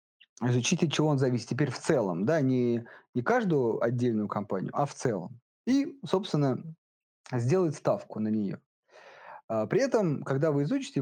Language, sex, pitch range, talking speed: Russian, male, 110-150 Hz, 150 wpm